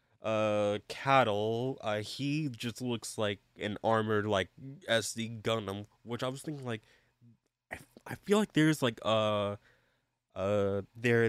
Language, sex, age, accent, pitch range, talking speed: English, male, 20-39, American, 105-130 Hz, 145 wpm